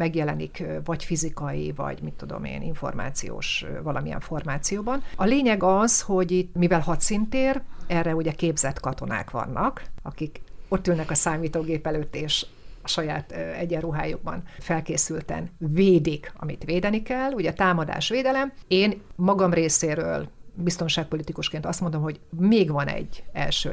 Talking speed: 130 wpm